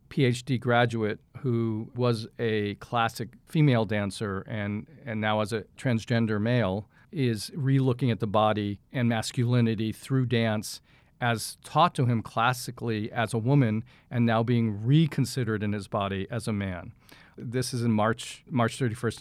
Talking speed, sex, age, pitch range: 150 wpm, male, 40-59, 110-130 Hz